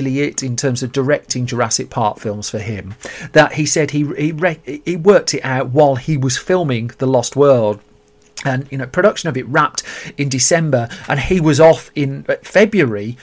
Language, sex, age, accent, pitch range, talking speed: English, male, 40-59, British, 125-155 Hz, 185 wpm